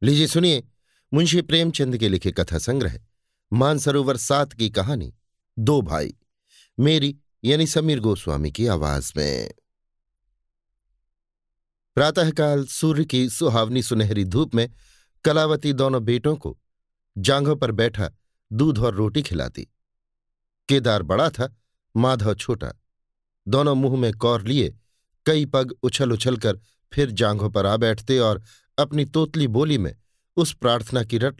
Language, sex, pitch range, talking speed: Hindi, male, 110-140 Hz, 130 wpm